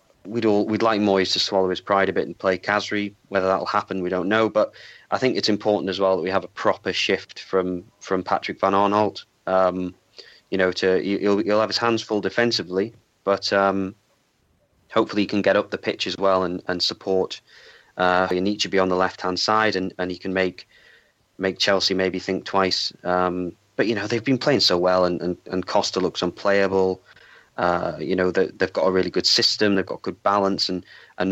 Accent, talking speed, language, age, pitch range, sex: British, 215 wpm, English, 30-49, 90-105 Hz, male